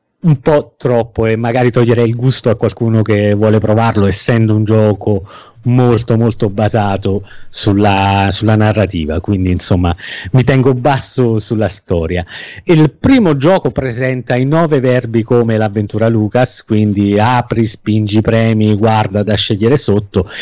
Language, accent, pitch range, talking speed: Italian, native, 105-130 Hz, 140 wpm